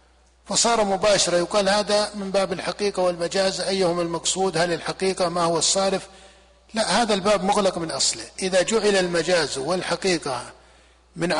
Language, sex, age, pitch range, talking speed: Arabic, male, 50-69, 170-205 Hz, 135 wpm